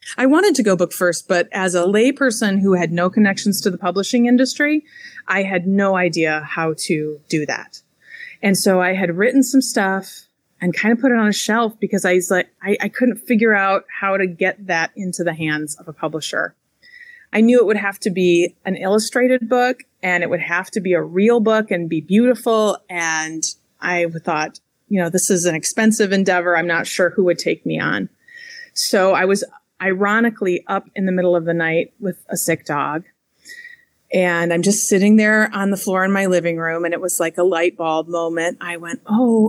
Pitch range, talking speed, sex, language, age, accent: 175-220 Hz, 210 wpm, female, English, 30-49, American